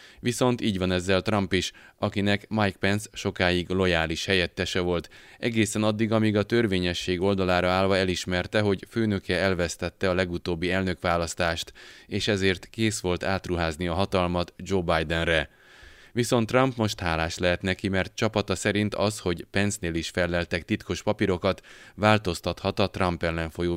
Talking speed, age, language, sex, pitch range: 140 wpm, 20-39, Hungarian, male, 90-100 Hz